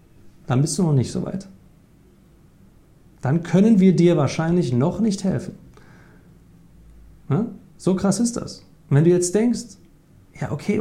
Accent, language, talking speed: German, German, 150 wpm